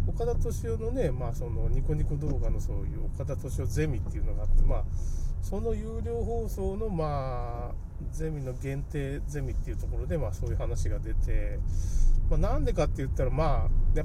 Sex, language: male, Japanese